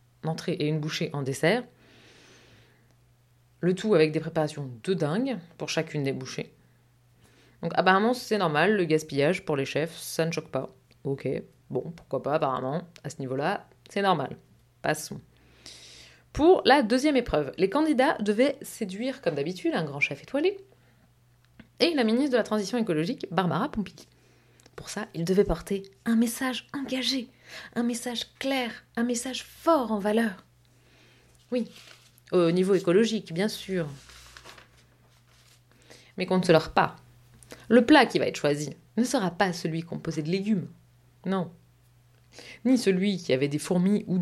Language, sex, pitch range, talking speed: French, female, 135-210 Hz, 155 wpm